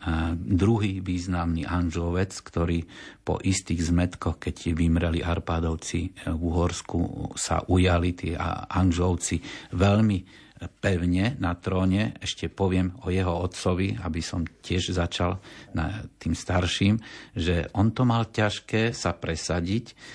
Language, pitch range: Slovak, 85-95 Hz